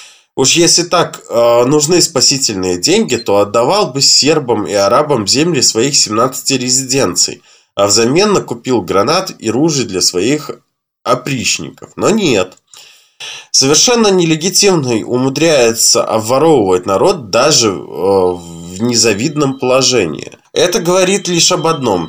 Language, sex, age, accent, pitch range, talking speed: Russian, male, 20-39, native, 115-165 Hz, 115 wpm